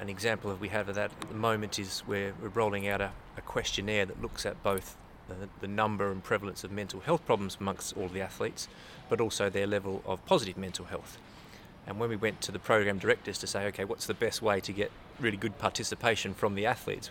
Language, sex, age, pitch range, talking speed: English, male, 30-49, 95-110 Hz, 230 wpm